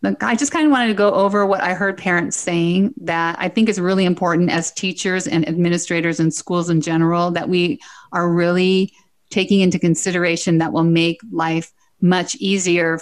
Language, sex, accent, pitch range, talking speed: English, female, American, 170-200 Hz, 185 wpm